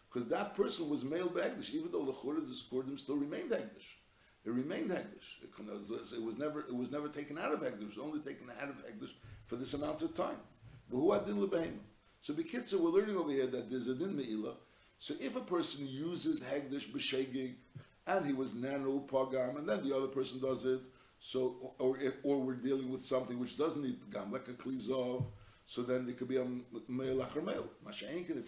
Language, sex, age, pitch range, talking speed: English, male, 60-79, 125-175 Hz, 195 wpm